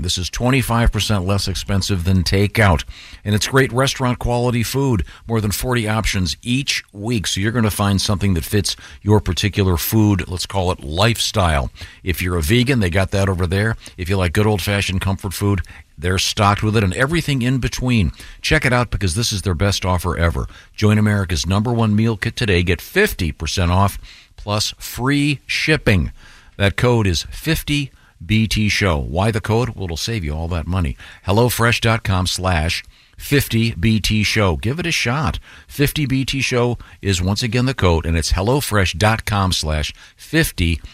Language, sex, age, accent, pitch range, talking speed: English, male, 50-69, American, 90-115 Hz, 175 wpm